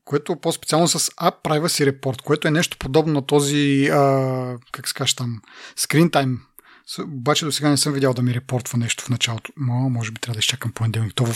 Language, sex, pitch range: Bulgarian, male, 125-150 Hz